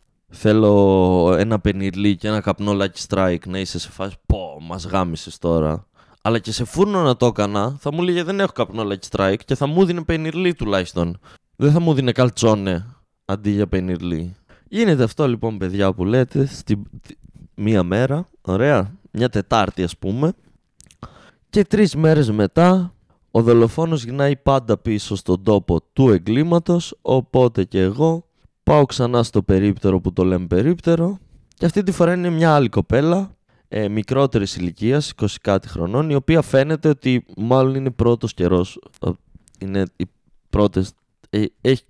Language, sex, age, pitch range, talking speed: Greek, male, 20-39, 95-145 Hz, 160 wpm